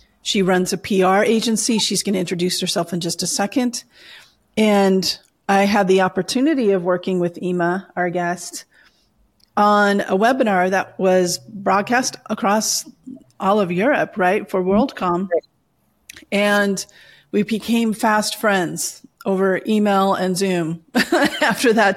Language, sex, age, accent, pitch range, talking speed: English, female, 40-59, American, 180-215 Hz, 135 wpm